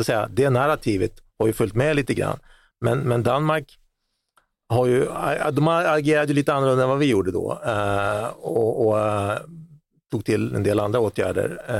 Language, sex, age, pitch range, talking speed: Swedish, male, 40-59, 110-135 Hz, 160 wpm